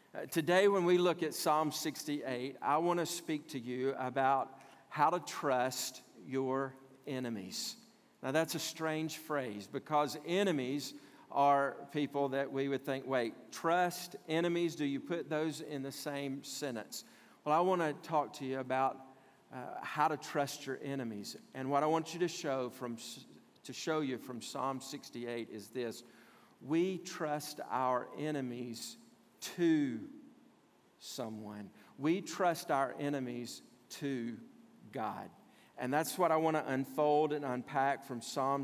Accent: American